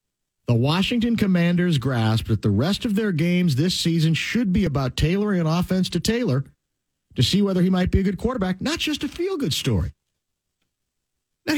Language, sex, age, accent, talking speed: English, male, 50-69, American, 180 wpm